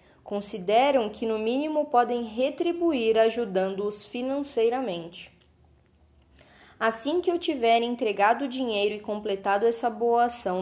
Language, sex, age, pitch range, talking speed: Portuguese, female, 10-29, 195-255 Hz, 115 wpm